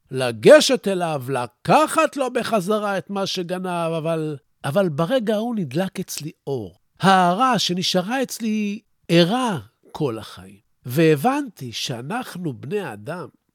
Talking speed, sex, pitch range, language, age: 110 wpm, male, 150-240 Hz, Hebrew, 50-69